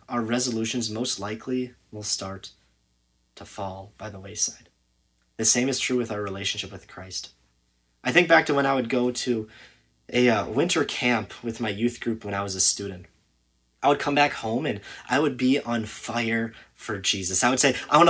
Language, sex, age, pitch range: English, male, 30-49, 95-125 Hz